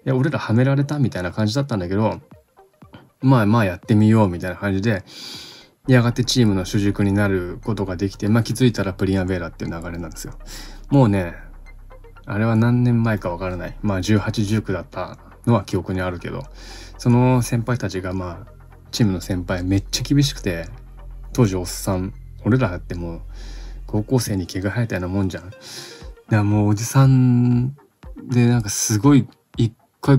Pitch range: 95-120 Hz